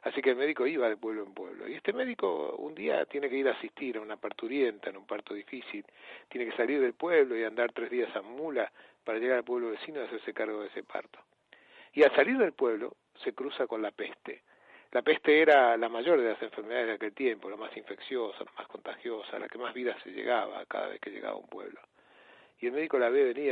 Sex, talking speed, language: male, 240 wpm, Spanish